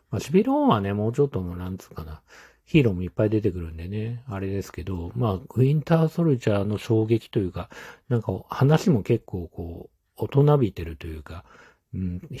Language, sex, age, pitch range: Japanese, male, 40-59, 90-125 Hz